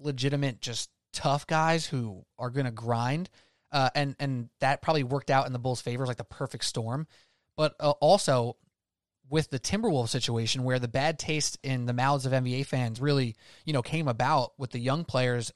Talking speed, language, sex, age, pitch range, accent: 195 wpm, English, male, 20-39, 125-155 Hz, American